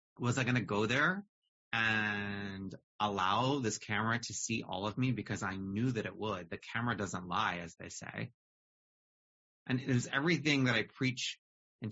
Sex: male